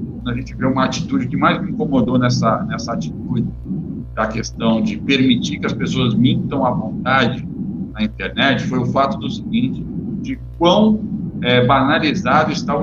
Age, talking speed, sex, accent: 60-79, 165 wpm, male, Brazilian